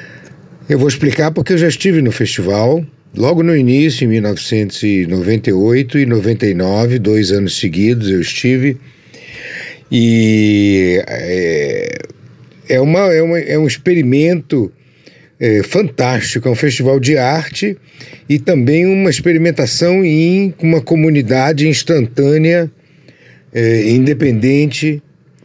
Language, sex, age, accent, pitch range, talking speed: Portuguese, male, 60-79, Brazilian, 120-155 Hz, 95 wpm